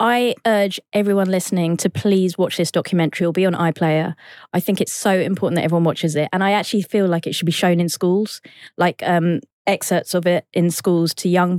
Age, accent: 20-39, British